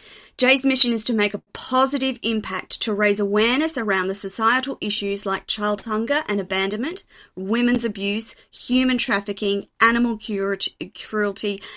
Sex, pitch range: female, 195-225 Hz